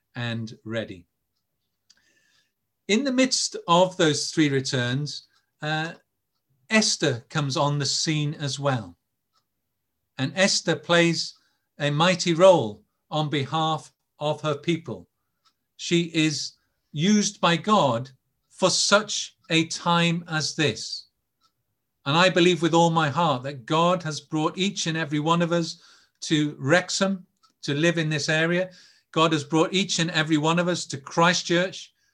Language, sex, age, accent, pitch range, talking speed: English, male, 50-69, British, 135-170 Hz, 140 wpm